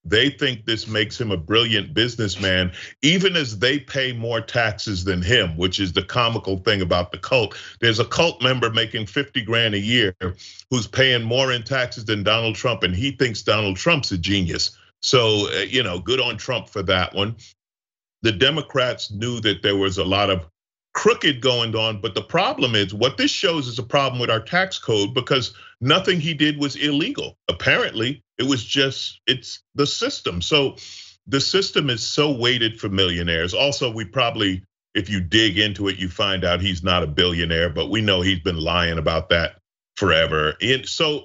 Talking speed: 190 wpm